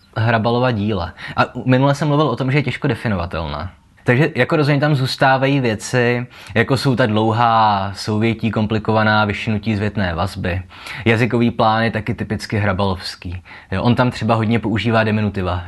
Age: 20-39